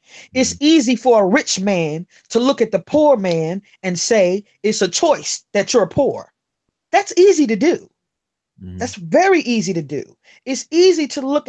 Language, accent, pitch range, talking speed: English, American, 195-265 Hz, 170 wpm